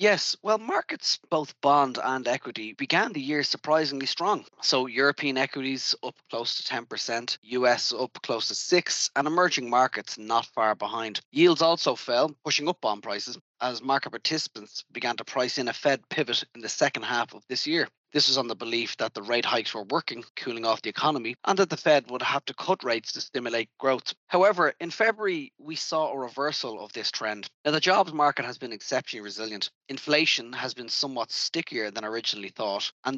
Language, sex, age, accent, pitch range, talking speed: English, male, 20-39, Irish, 120-155 Hz, 195 wpm